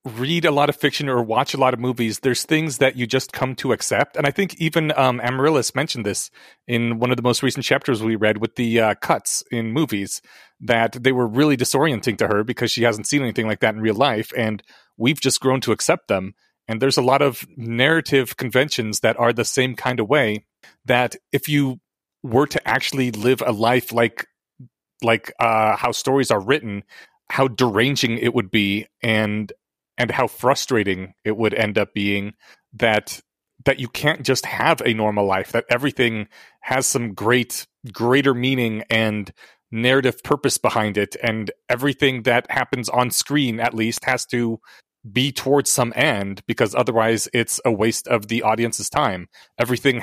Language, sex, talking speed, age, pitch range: English, male, 185 wpm, 30-49, 110-135 Hz